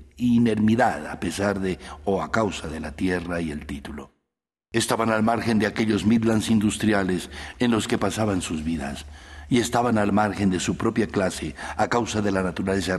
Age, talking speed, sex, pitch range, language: 60-79, 180 wpm, male, 75-110 Hz, English